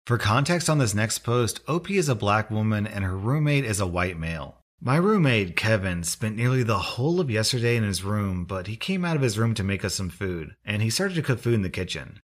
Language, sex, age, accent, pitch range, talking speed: English, male, 30-49, American, 100-145 Hz, 250 wpm